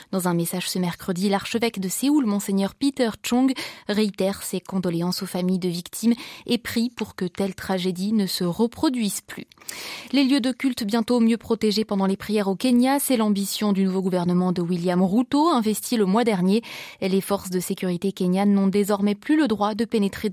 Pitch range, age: 190-235 Hz, 20-39